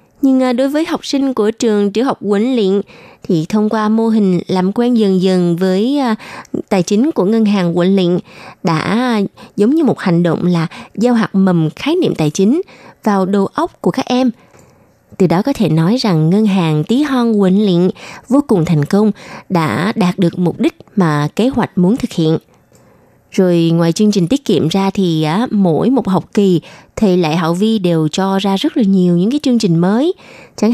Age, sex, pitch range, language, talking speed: 20-39, female, 175-235 Hz, Vietnamese, 205 wpm